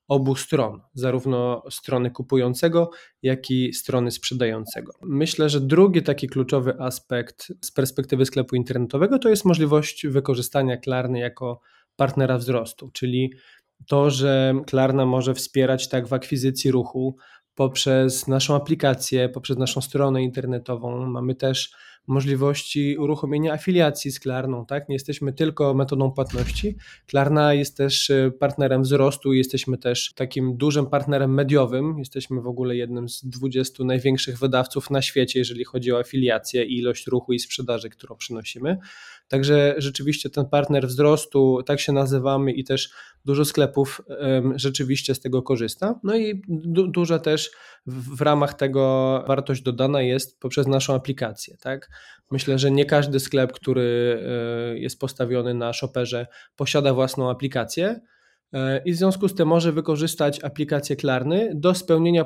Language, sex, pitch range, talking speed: Polish, male, 130-145 Hz, 140 wpm